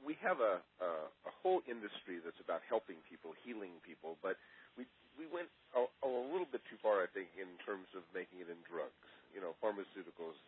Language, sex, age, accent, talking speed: English, male, 40-59, American, 200 wpm